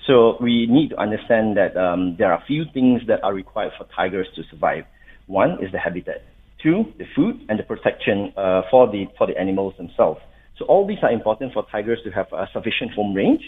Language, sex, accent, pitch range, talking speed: English, male, Malaysian, 95-130 Hz, 220 wpm